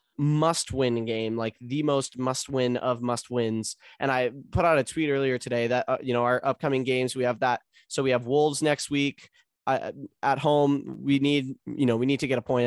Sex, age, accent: male, 10-29, American